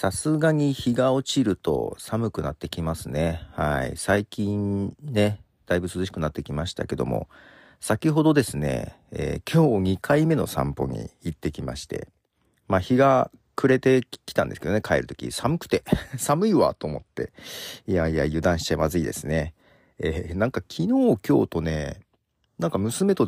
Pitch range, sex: 80-130 Hz, male